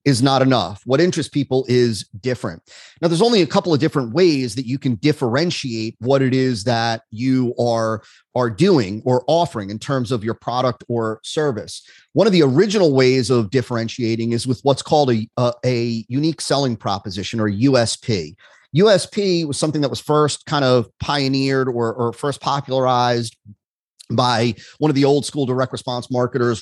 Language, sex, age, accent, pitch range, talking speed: English, male, 30-49, American, 120-150 Hz, 175 wpm